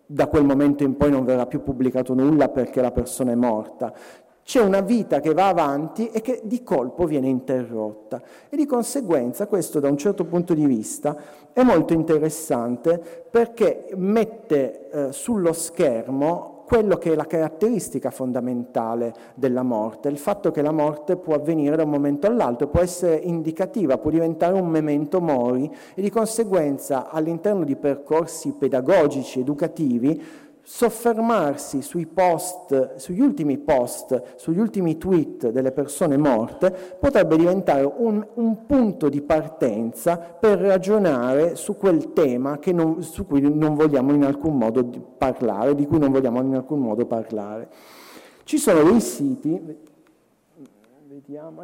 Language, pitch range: Italian, 140-200 Hz